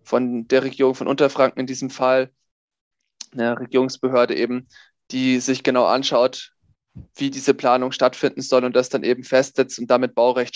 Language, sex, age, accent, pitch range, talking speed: German, male, 20-39, German, 125-135 Hz, 160 wpm